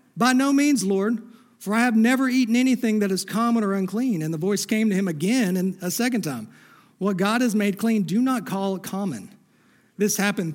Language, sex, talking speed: English, male, 215 wpm